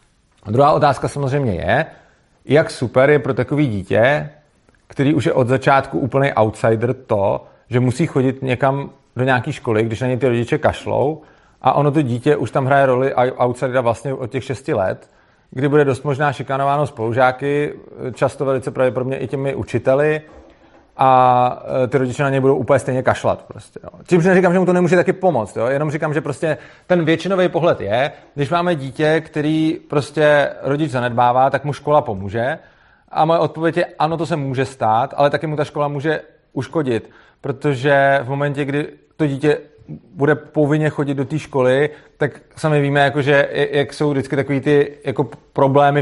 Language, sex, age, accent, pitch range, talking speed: Czech, male, 40-59, native, 125-145 Hz, 170 wpm